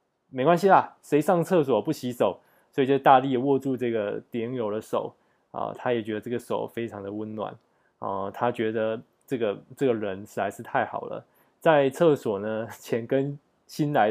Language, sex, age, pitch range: Chinese, male, 20-39, 110-135 Hz